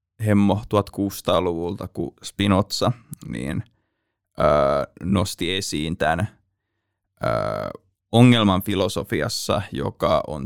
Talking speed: 80 wpm